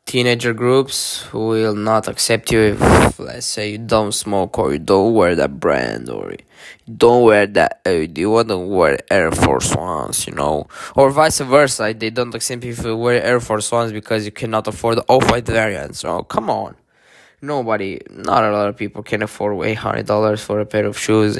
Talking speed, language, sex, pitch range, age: 195 wpm, Romanian, male, 110-135 Hz, 10-29